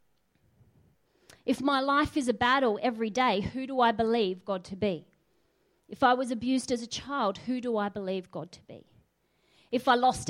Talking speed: 185 wpm